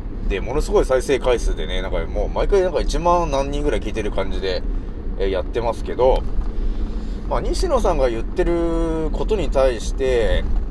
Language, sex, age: Japanese, male, 30-49